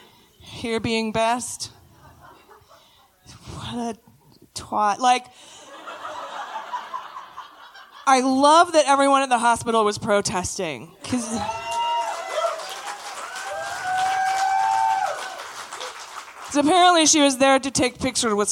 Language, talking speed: English, 85 wpm